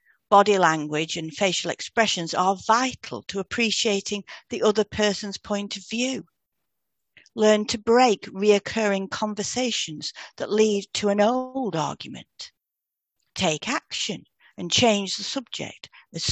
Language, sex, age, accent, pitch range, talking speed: English, female, 50-69, British, 180-230 Hz, 120 wpm